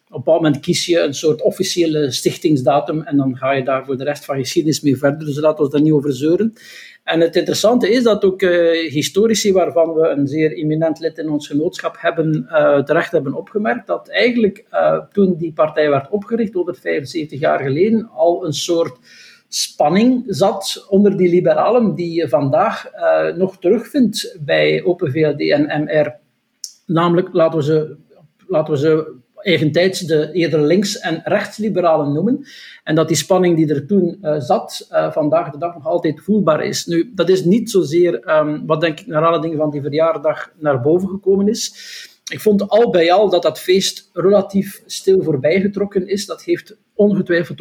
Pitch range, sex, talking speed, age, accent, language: 155-195 Hz, male, 185 wpm, 60-79, Dutch, Dutch